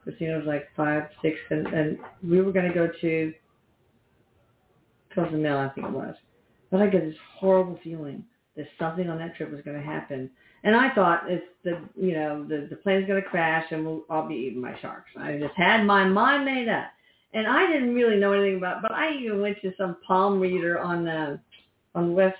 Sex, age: female, 50-69